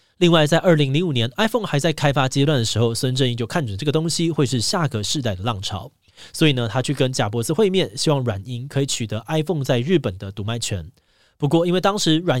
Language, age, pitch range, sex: Chinese, 20-39, 115-155 Hz, male